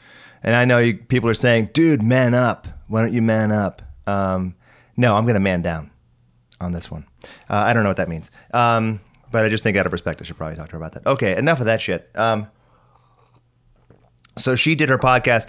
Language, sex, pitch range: English, male, 95-120 Hz